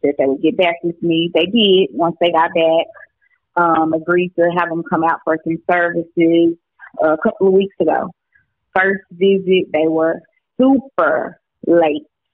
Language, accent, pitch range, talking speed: English, American, 160-190 Hz, 170 wpm